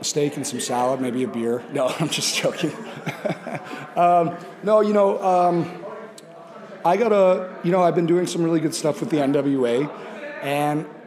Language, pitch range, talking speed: English, 130-165 Hz, 175 wpm